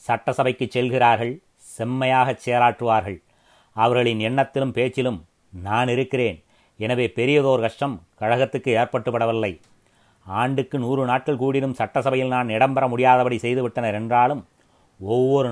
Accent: native